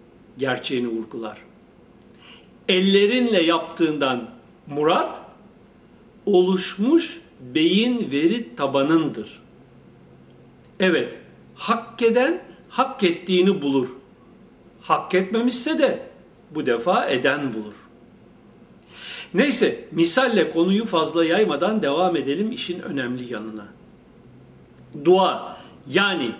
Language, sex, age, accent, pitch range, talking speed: Turkish, male, 60-79, native, 145-220 Hz, 75 wpm